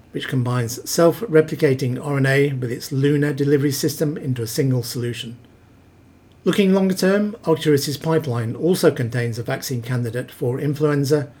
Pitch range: 120-150 Hz